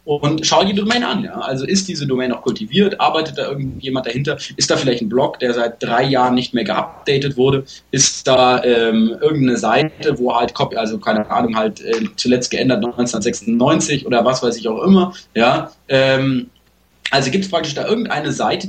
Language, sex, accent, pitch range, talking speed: English, male, German, 120-150 Hz, 195 wpm